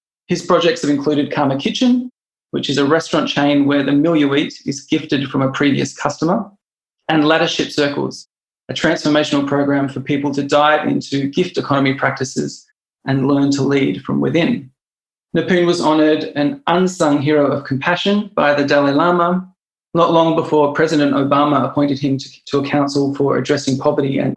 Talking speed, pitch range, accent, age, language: 170 wpm, 140-155 Hz, Australian, 20-39, English